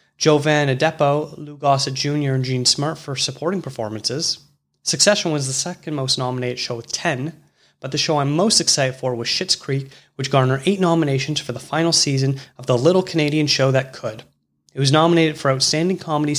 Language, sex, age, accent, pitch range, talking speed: English, male, 30-49, American, 125-155 Hz, 185 wpm